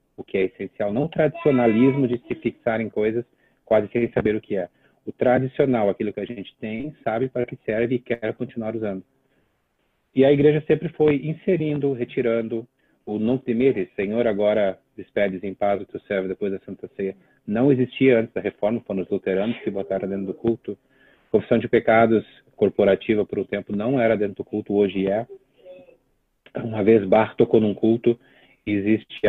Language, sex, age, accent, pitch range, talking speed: Portuguese, male, 30-49, Brazilian, 100-130 Hz, 185 wpm